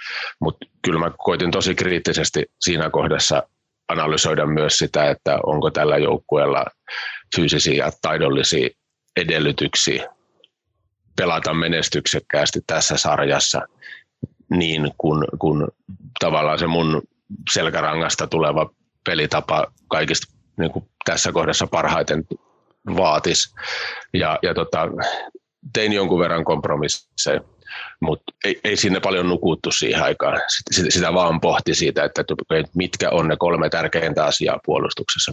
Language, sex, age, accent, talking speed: Finnish, male, 30-49, native, 110 wpm